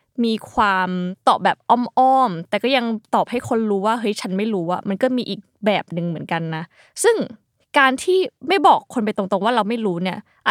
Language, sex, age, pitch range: Thai, female, 20-39, 205-270 Hz